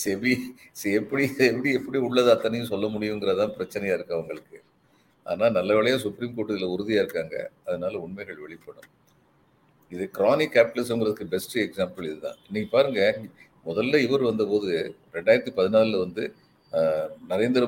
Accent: native